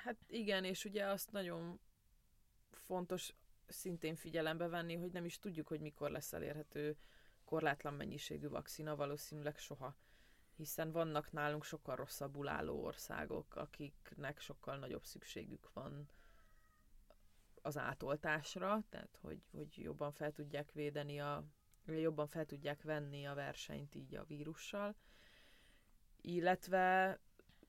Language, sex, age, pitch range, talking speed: Hungarian, female, 20-39, 145-170 Hz, 120 wpm